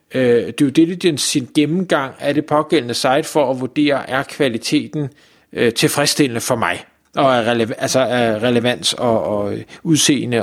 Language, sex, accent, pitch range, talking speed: Danish, male, native, 135-185 Hz, 160 wpm